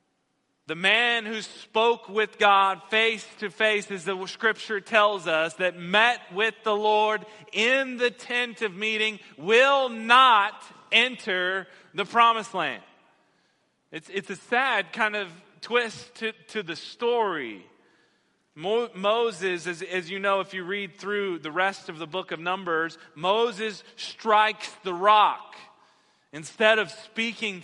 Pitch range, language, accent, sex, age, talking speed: 180-220 Hz, English, American, male, 40-59, 140 wpm